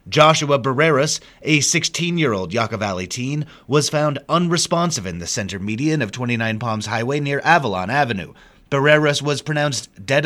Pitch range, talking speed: 110-160 Hz, 145 wpm